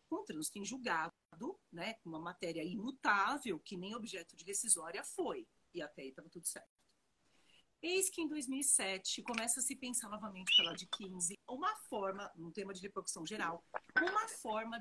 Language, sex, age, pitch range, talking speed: Portuguese, female, 40-59, 195-295 Hz, 170 wpm